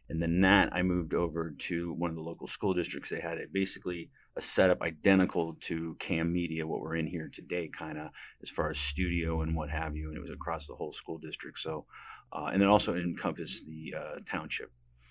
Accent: American